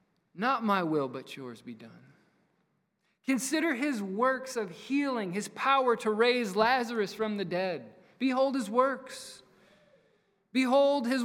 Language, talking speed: English, 135 wpm